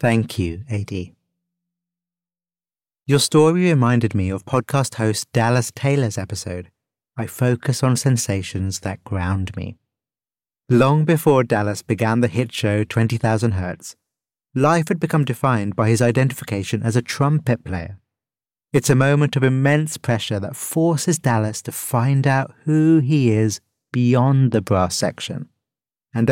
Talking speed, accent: 135 wpm, British